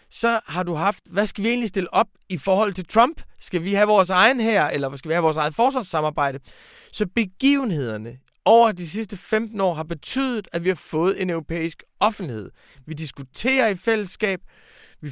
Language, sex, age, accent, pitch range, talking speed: Danish, male, 30-49, native, 165-230 Hz, 190 wpm